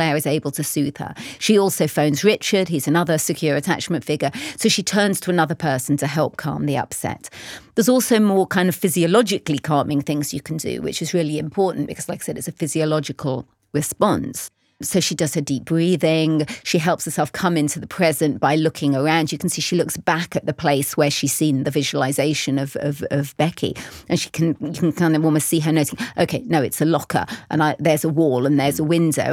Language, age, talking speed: English, 40-59, 220 wpm